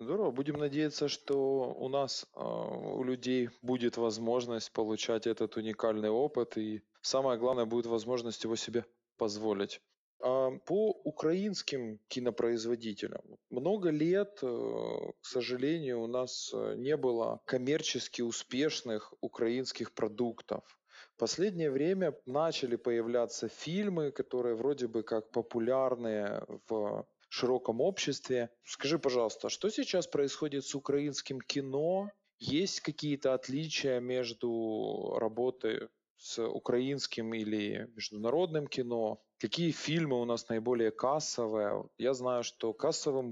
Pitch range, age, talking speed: 115-140 Hz, 20-39, 110 wpm